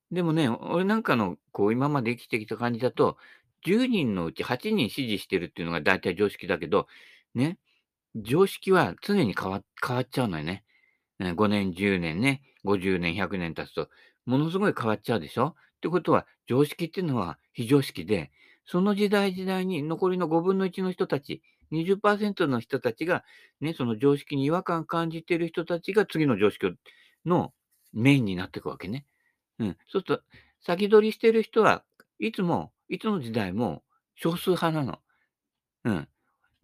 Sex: male